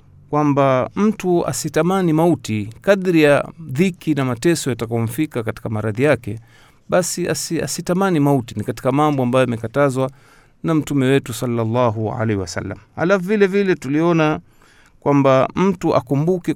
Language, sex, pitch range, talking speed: Swahili, male, 120-150 Hz, 125 wpm